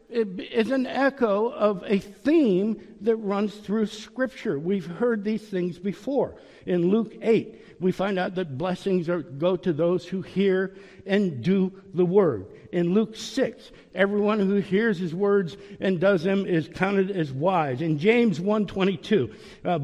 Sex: male